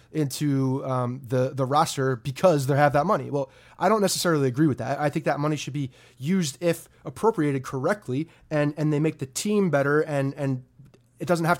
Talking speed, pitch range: 200 wpm, 135-170 Hz